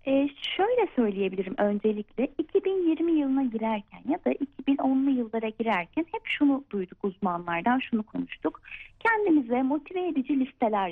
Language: Turkish